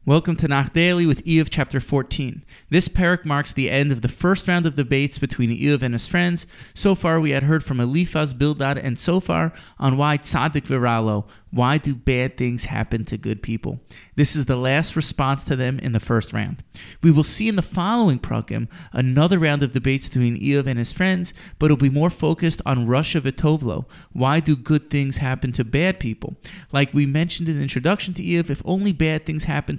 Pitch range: 130-165 Hz